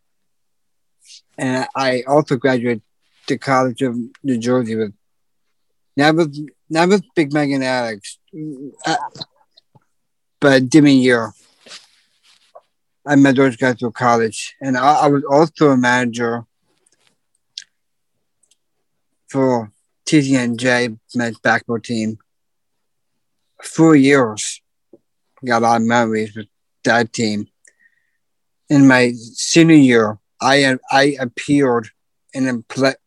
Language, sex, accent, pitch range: English, male, American, 120-140 Hz